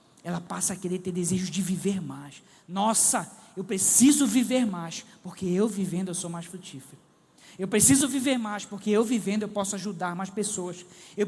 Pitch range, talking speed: 195-260 Hz, 180 wpm